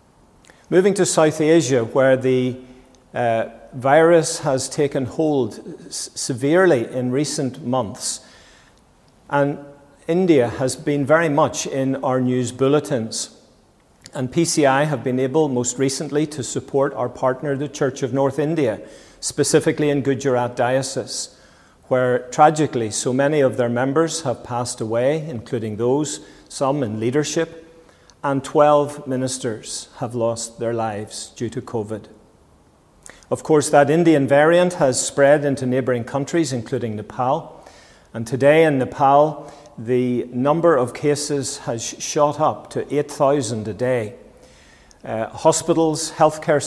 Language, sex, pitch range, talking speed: English, male, 125-150 Hz, 130 wpm